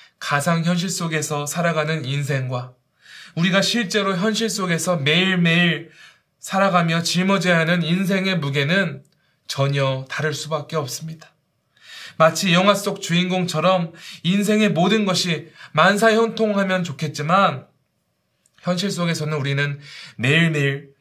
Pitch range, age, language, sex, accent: 140-180 Hz, 20-39, Korean, male, native